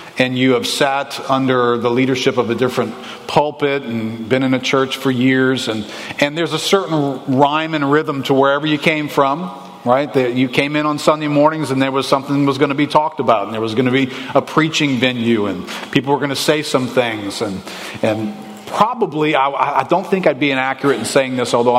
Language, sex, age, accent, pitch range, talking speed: English, male, 40-59, American, 125-150 Hz, 225 wpm